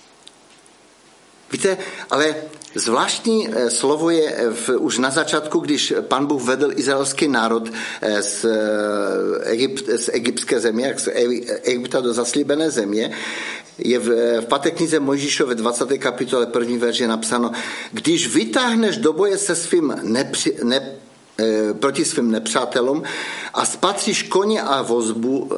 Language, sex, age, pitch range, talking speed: Czech, male, 50-69, 125-215 Hz, 120 wpm